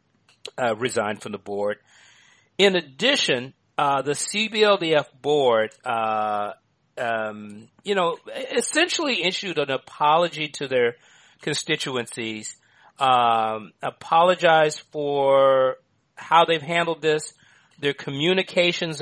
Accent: American